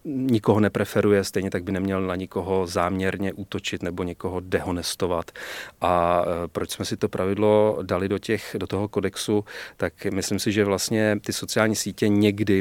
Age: 30-49